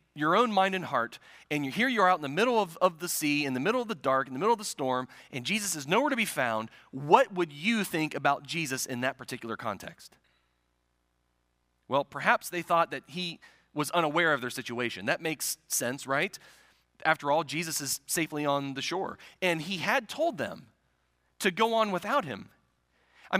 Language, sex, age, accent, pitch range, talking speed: English, male, 30-49, American, 130-195 Hz, 205 wpm